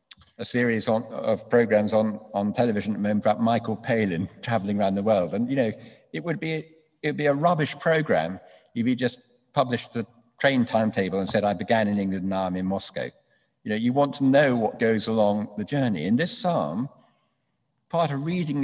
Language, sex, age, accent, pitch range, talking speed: English, male, 50-69, British, 105-140 Hz, 205 wpm